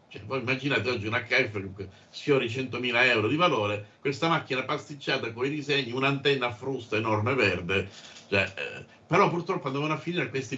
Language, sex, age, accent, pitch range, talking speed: Italian, male, 50-69, native, 110-150 Hz, 160 wpm